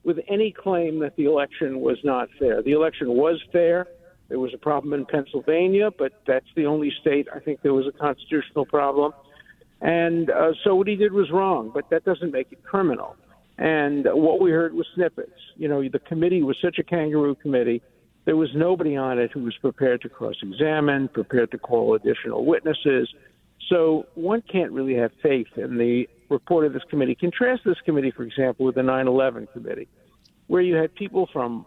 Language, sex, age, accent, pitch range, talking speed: English, male, 50-69, American, 135-175 Hz, 195 wpm